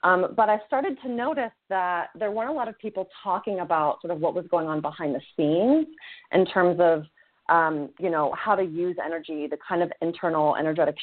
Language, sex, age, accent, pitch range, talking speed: English, female, 30-49, American, 150-195 Hz, 210 wpm